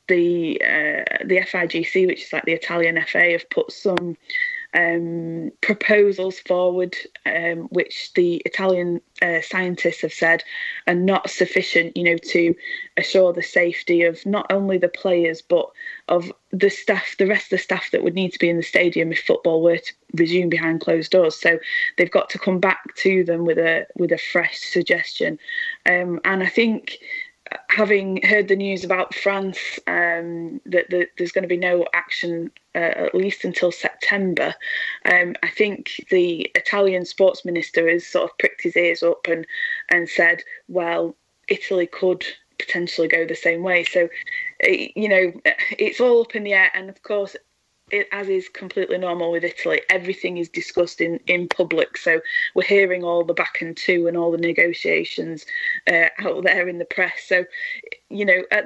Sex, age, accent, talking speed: female, 20-39, British, 175 wpm